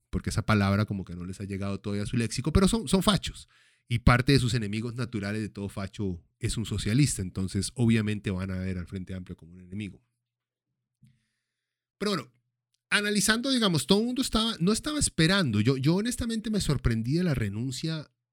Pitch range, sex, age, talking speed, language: 105-145 Hz, male, 30-49, 190 wpm, Spanish